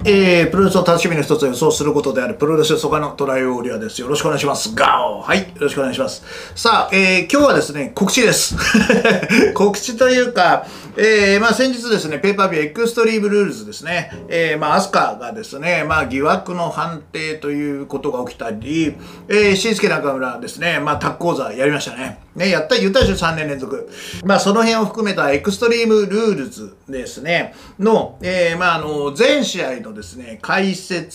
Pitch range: 150-220 Hz